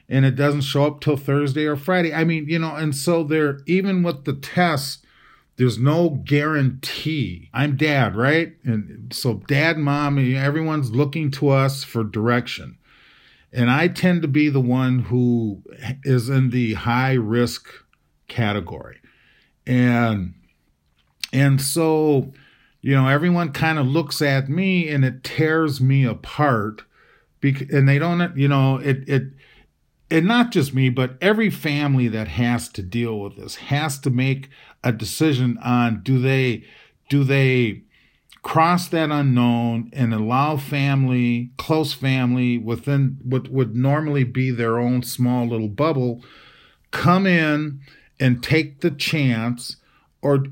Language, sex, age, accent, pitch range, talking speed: English, male, 40-59, American, 120-150 Hz, 145 wpm